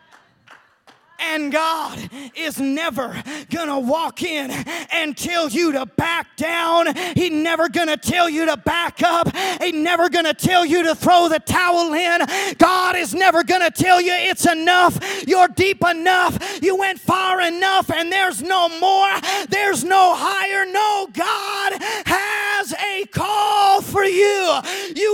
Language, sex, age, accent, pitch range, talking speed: English, male, 30-49, American, 315-390 Hz, 155 wpm